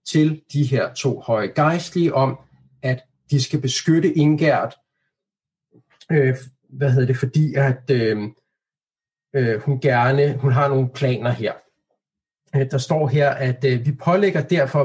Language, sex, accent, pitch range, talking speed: Danish, male, native, 130-165 Hz, 145 wpm